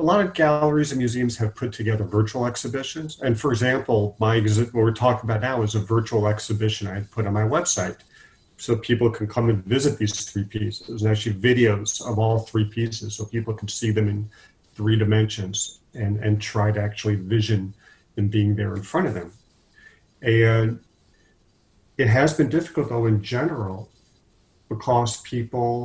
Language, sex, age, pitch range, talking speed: English, male, 40-59, 105-120 Hz, 180 wpm